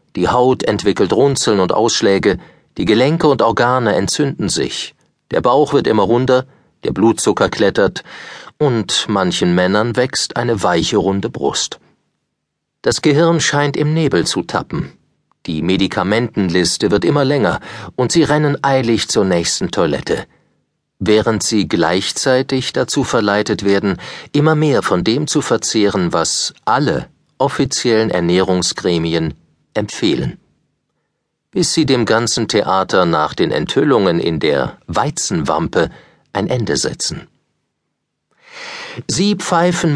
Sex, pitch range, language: male, 105-150 Hz, German